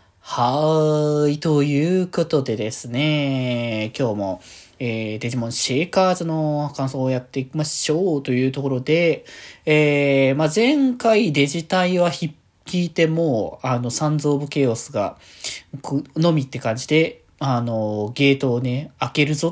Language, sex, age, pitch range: Japanese, male, 20-39, 120-155 Hz